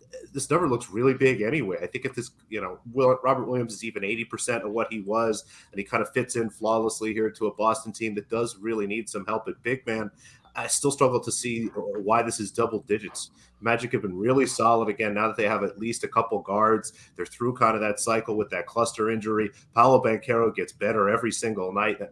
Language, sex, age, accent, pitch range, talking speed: English, male, 30-49, American, 105-120 Hz, 230 wpm